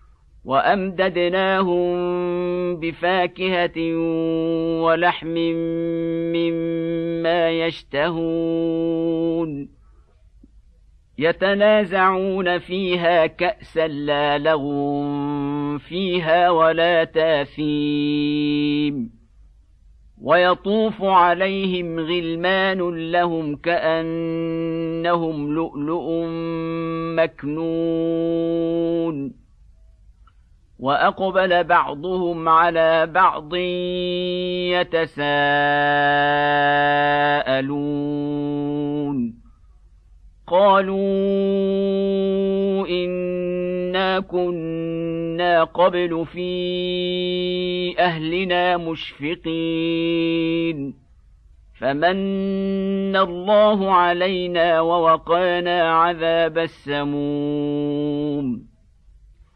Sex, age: male, 50-69